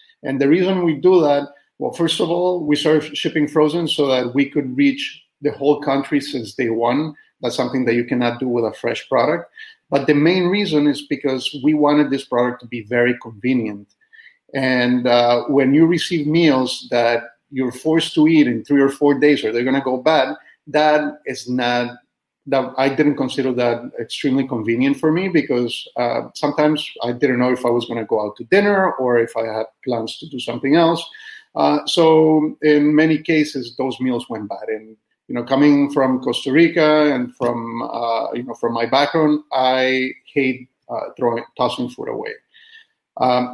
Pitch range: 125-155 Hz